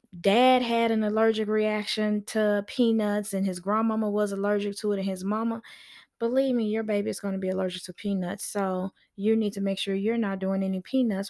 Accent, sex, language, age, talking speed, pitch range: American, female, English, 20-39, 205 wpm, 195-235 Hz